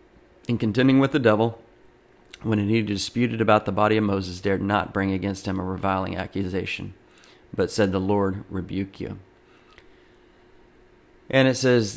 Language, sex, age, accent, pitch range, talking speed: English, male, 30-49, American, 95-105 Hz, 150 wpm